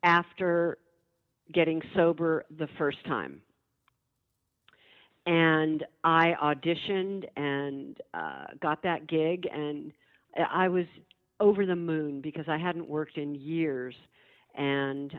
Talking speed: 105 wpm